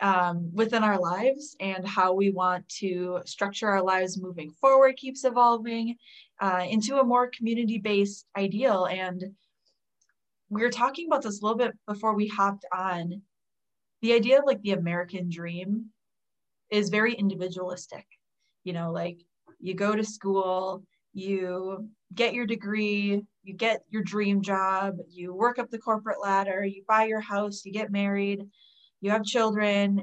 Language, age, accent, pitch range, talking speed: English, 20-39, American, 185-220 Hz, 155 wpm